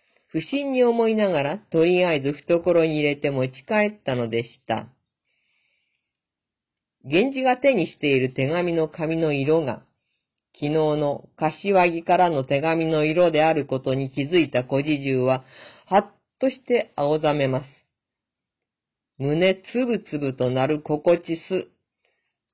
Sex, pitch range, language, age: female, 145-225 Hz, Japanese, 40-59